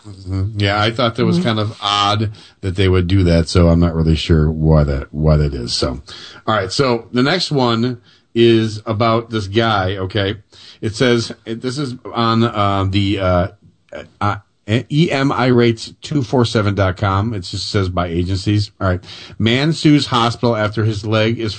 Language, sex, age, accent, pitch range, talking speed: English, male, 40-59, American, 100-125 Hz, 165 wpm